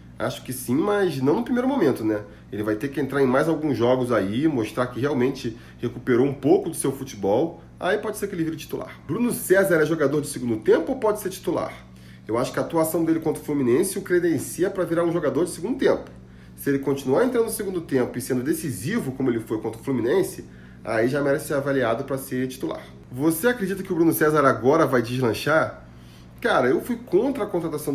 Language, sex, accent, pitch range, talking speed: Portuguese, male, Brazilian, 115-175 Hz, 220 wpm